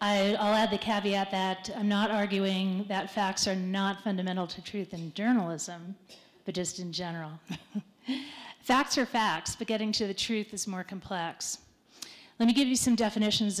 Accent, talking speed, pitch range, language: American, 170 wpm, 190-230 Hz, English